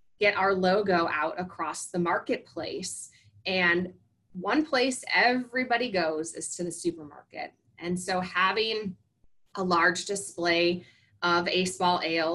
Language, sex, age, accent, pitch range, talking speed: English, female, 20-39, American, 170-200 Hz, 125 wpm